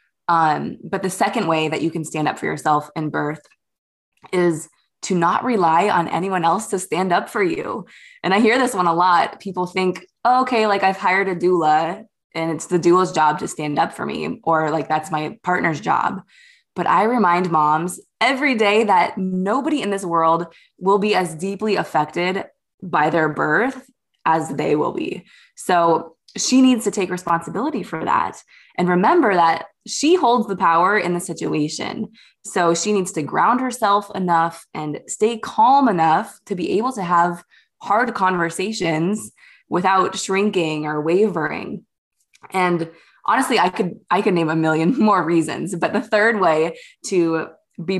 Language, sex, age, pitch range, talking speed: English, female, 20-39, 165-210 Hz, 170 wpm